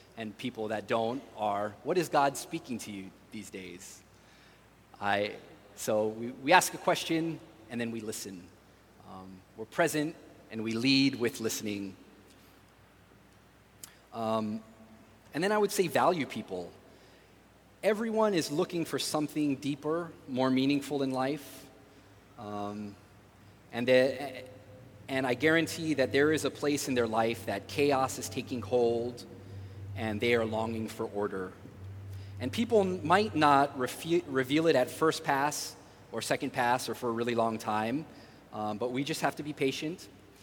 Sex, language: male, English